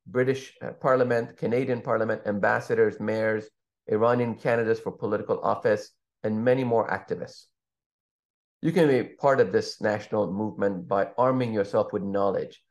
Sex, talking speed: male, 130 wpm